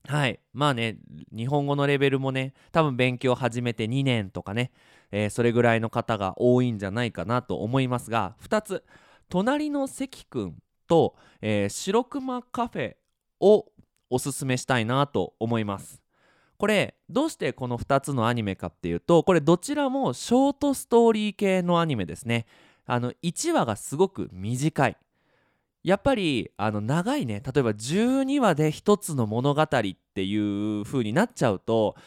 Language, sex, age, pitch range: Japanese, male, 20-39, 115-175 Hz